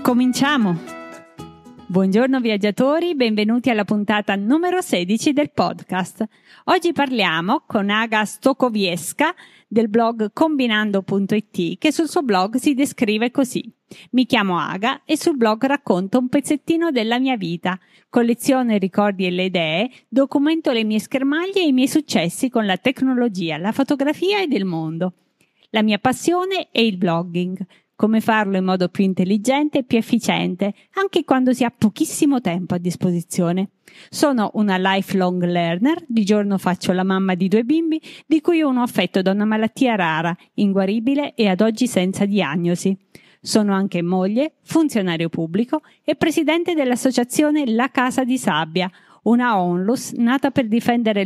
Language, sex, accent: Italian, female, native